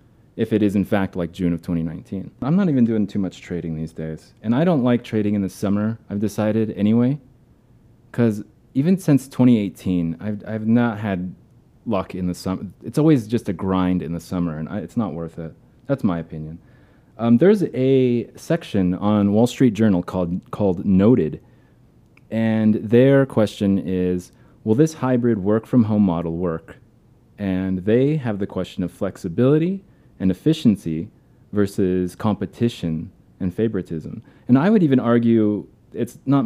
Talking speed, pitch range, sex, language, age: 165 wpm, 95-120 Hz, male, English, 30-49